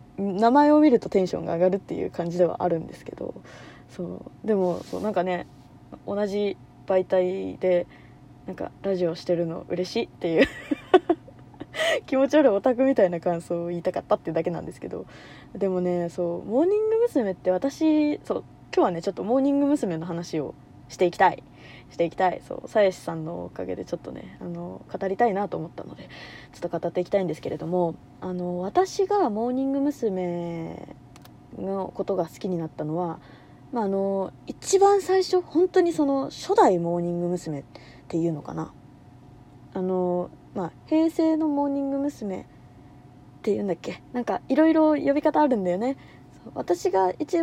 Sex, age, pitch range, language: female, 20-39, 175-280 Hz, Japanese